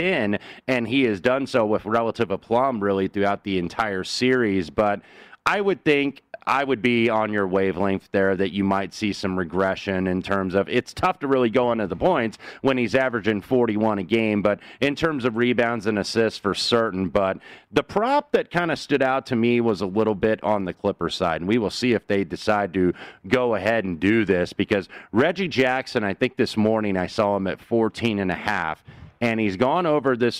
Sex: male